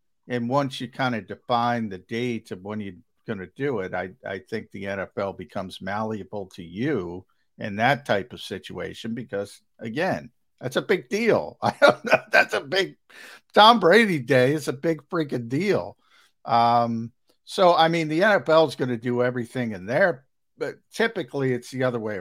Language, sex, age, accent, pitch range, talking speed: English, male, 50-69, American, 105-130 Hz, 175 wpm